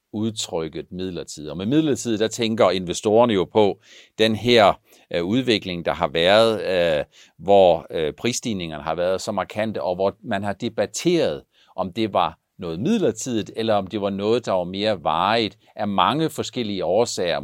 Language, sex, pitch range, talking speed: Danish, male, 85-110 Hz, 155 wpm